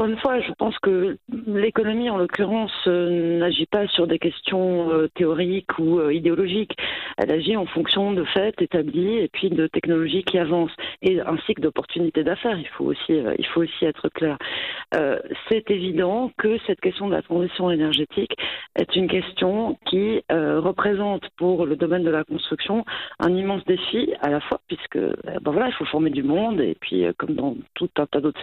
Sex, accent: female, French